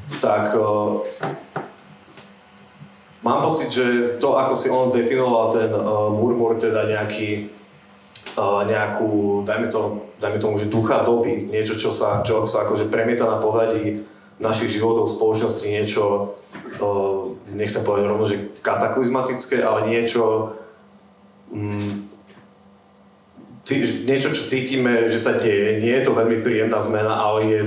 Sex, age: male, 30-49